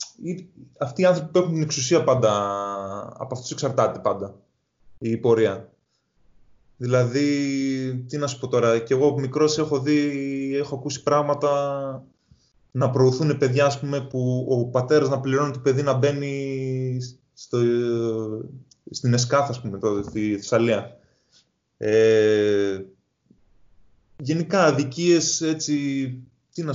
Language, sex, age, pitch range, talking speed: Greek, male, 20-39, 115-150 Hz, 110 wpm